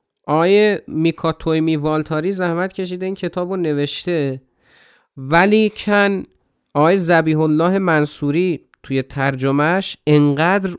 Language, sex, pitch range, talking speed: Persian, male, 125-175 Hz, 105 wpm